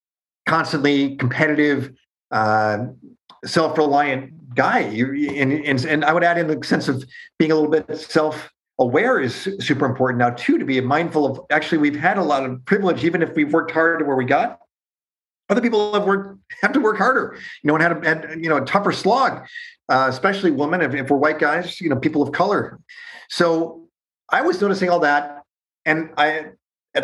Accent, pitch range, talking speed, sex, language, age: American, 130-160 Hz, 195 wpm, male, English, 40-59